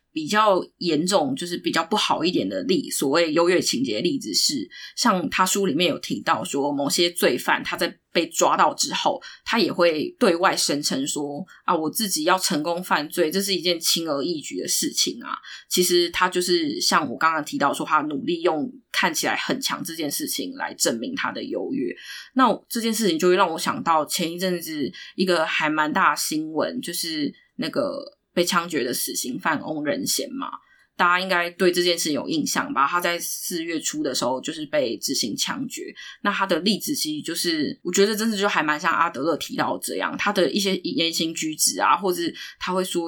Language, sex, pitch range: Chinese, female, 170-285 Hz